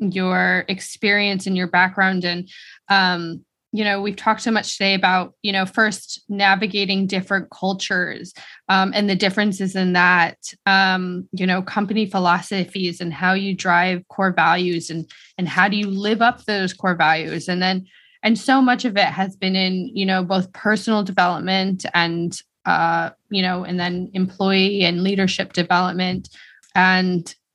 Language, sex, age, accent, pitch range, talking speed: English, female, 20-39, American, 180-205 Hz, 160 wpm